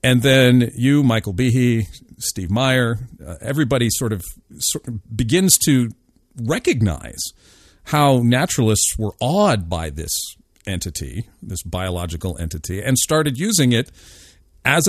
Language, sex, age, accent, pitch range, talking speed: English, male, 50-69, American, 90-125 Hz, 120 wpm